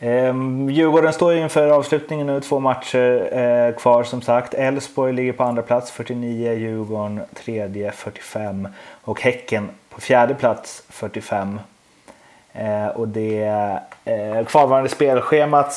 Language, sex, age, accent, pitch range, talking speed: Swedish, male, 30-49, native, 110-140 Hz, 125 wpm